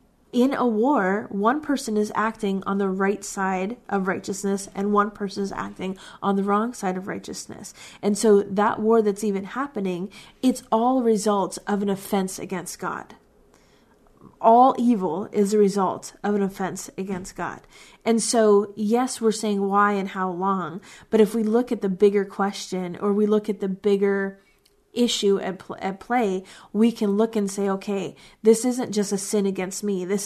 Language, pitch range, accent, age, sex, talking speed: English, 195-215 Hz, American, 30-49, female, 180 wpm